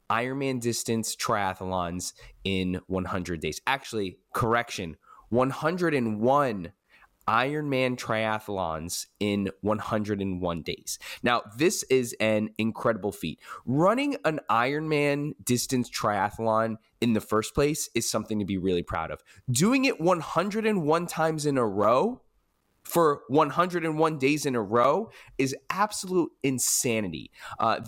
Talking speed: 115 wpm